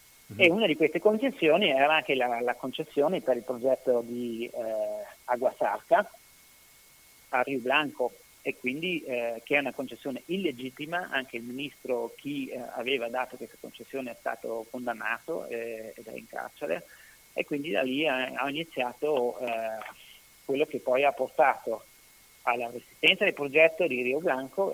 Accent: native